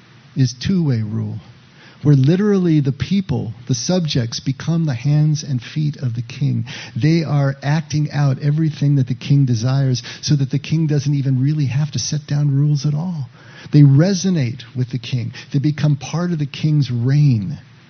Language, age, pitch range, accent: English, 50-69, 125-150 Hz, American